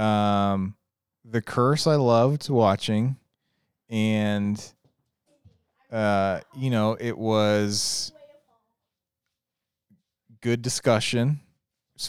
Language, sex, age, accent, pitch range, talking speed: English, male, 30-49, American, 105-130 Hz, 75 wpm